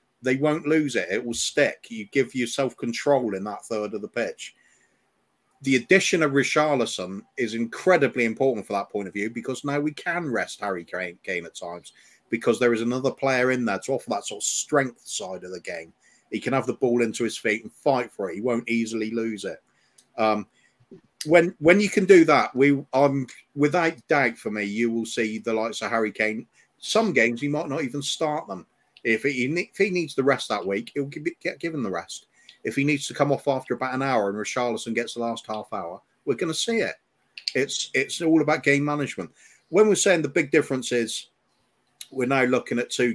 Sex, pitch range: male, 110-145 Hz